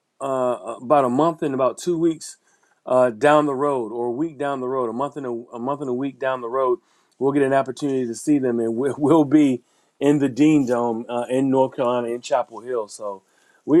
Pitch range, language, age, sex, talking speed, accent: 125-155 Hz, English, 30-49, male, 215 wpm, American